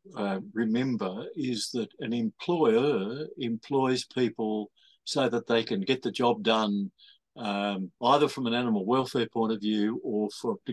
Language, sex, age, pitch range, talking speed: English, male, 50-69, 110-150 Hz, 155 wpm